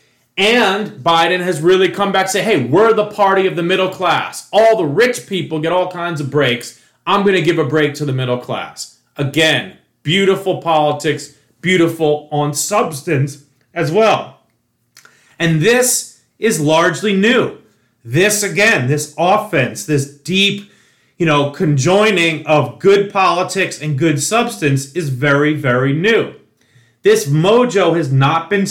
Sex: male